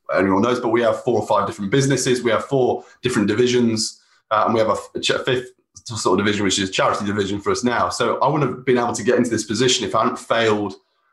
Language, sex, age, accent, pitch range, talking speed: English, male, 20-39, British, 110-125 Hz, 255 wpm